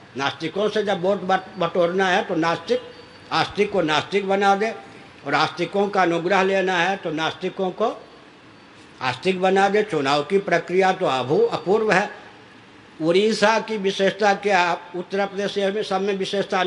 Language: Hindi